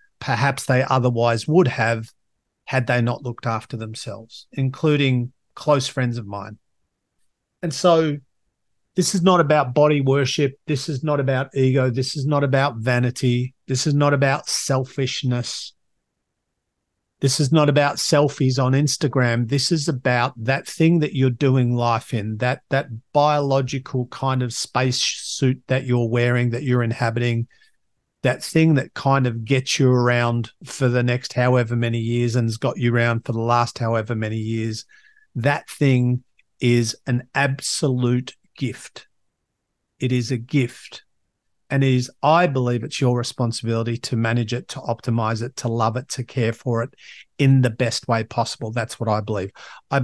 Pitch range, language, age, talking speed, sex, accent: 115-140 Hz, English, 50-69, 160 wpm, male, Australian